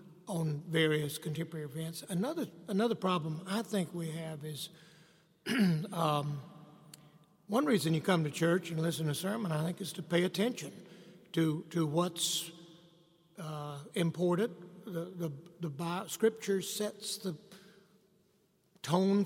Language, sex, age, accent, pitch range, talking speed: English, male, 60-79, American, 165-195 Hz, 135 wpm